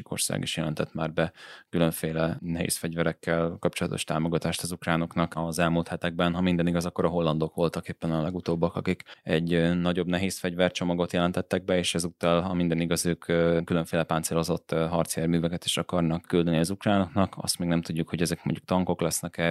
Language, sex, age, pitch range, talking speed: Hungarian, male, 20-39, 85-90 Hz, 160 wpm